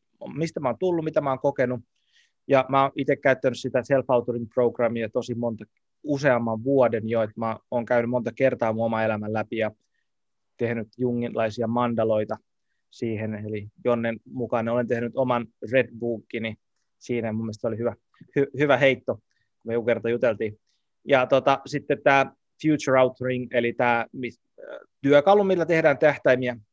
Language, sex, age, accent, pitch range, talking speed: Finnish, male, 20-39, native, 115-135 Hz, 150 wpm